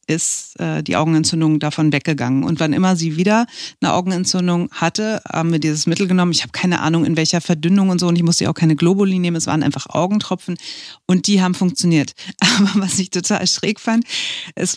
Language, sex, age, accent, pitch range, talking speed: German, female, 40-59, German, 160-195 Hz, 205 wpm